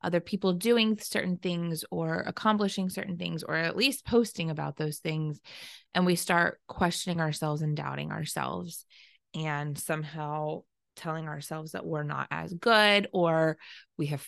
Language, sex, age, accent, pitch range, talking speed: English, female, 20-39, American, 160-210 Hz, 150 wpm